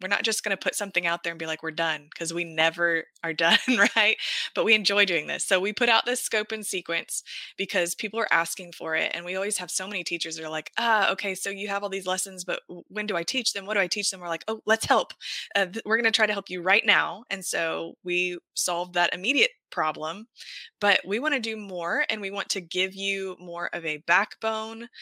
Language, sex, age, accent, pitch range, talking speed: English, female, 20-39, American, 170-215 Hz, 250 wpm